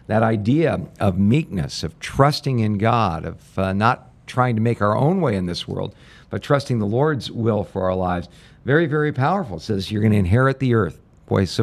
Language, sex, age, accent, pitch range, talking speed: English, male, 50-69, American, 100-135 Hz, 210 wpm